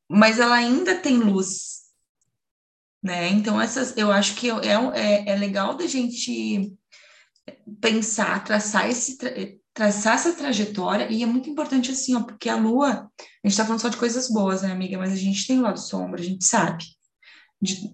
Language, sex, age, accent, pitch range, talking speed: Portuguese, female, 20-39, Brazilian, 205-265 Hz, 175 wpm